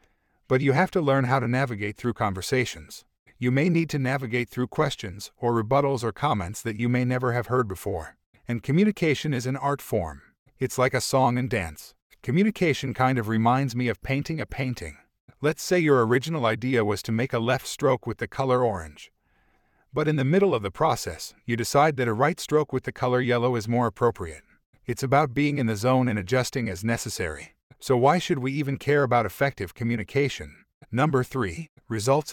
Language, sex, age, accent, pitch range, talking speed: English, male, 50-69, American, 115-140 Hz, 195 wpm